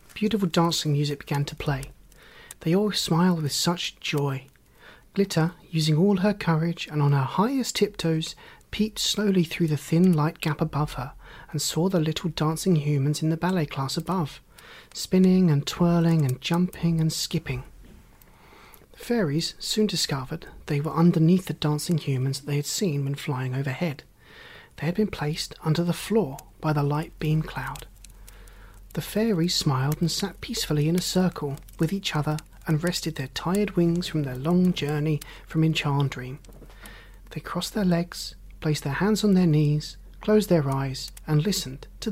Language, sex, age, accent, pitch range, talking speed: English, male, 30-49, British, 145-180 Hz, 165 wpm